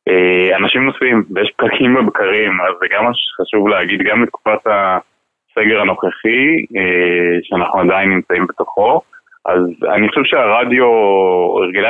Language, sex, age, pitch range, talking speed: Hebrew, male, 20-39, 95-145 Hz, 120 wpm